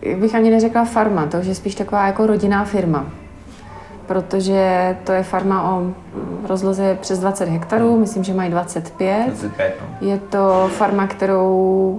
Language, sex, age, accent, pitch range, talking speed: Czech, female, 30-49, native, 185-200 Hz, 145 wpm